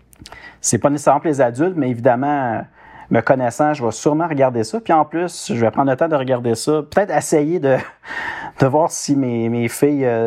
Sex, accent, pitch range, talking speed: male, Canadian, 110-145 Hz, 205 wpm